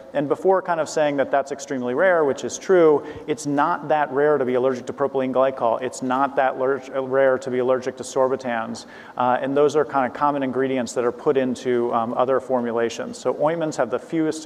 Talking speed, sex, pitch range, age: 210 wpm, male, 125-150 Hz, 40-59